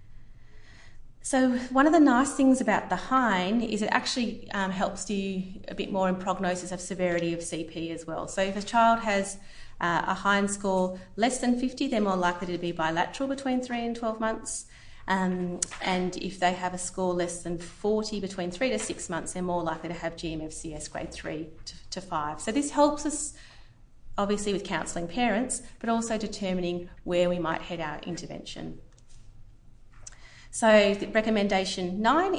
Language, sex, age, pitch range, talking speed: English, female, 30-49, 170-220 Hz, 175 wpm